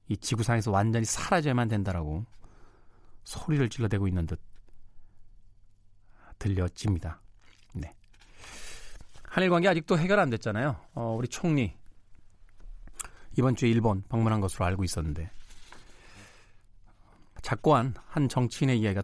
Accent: native